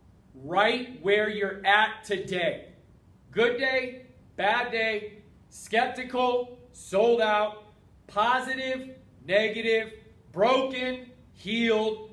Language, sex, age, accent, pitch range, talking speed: English, male, 30-49, American, 210-250 Hz, 80 wpm